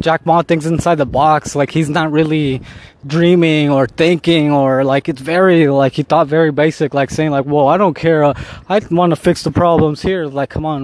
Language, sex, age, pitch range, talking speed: English, male, 20-39, 140-170 Hz, 220 wpm